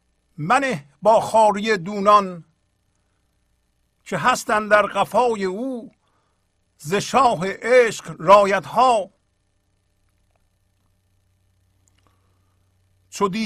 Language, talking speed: Persian, 65 wpm